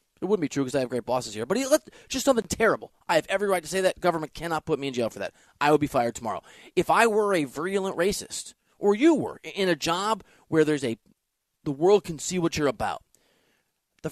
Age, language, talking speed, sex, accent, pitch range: 30-49, English, 255 wpm, male, American, 130-185 Hz